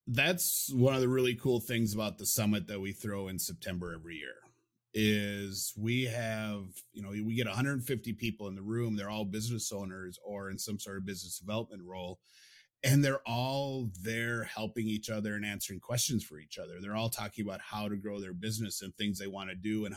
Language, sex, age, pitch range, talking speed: English, male, 30-49, 100-120 Hz, 210 wpm